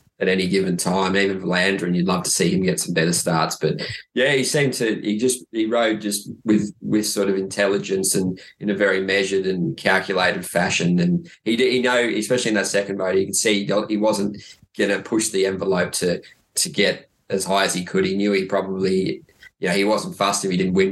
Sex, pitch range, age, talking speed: male, 95-110 Hz, 20-39, 230 wpm